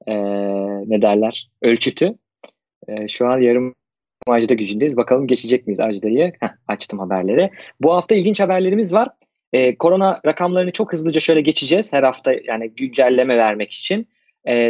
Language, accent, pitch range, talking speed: Turkish, native, 120-160 Hz, 145 wpm